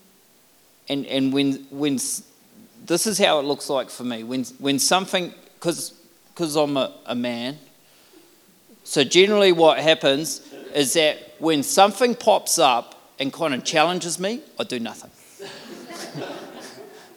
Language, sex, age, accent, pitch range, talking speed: English, male, 40-59, Australian, 155-215 Hz, 135 wpm